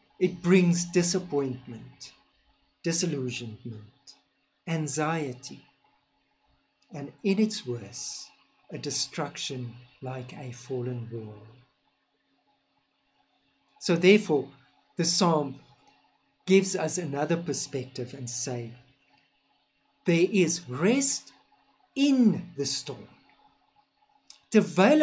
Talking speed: 75 wpm